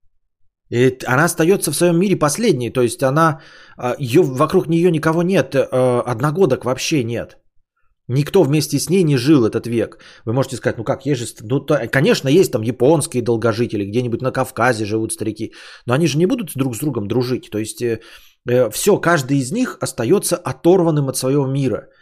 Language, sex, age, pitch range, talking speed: Bulgarian, male, 20-39, 120-170 Hz, 175 wpm